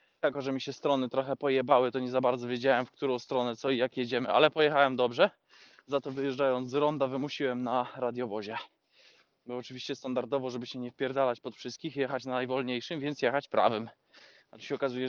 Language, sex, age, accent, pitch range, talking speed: Polish, male, 20-39, native, 120-140 Hz, 185 wpm